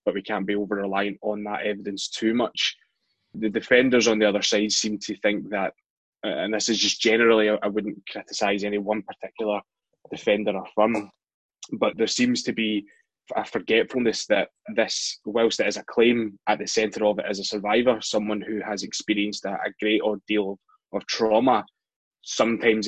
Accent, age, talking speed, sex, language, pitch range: British, 20-39, 175 wpm, male, English, 105-115 Hz